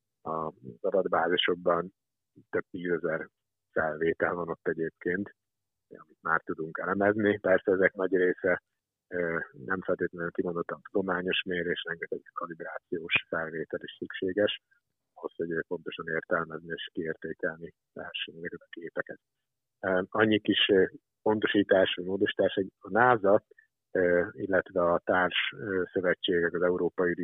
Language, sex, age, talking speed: Hungarian, male, 50-69, 110 wpm